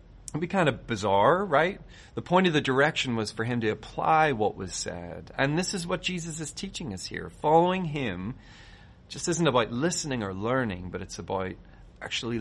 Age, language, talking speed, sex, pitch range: 40-59, English, 200 wpm, male, 100-130 Hz